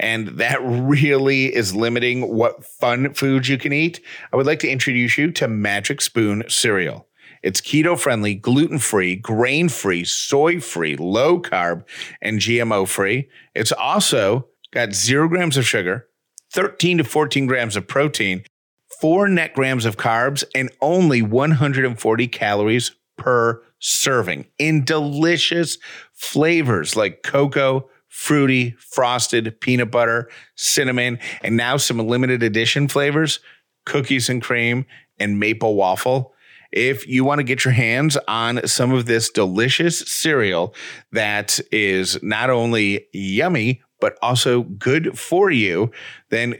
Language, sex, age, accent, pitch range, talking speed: English, male, 40-59, American, 115-140 Hz, 125 wpm